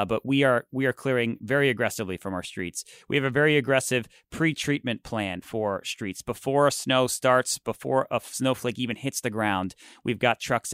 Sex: male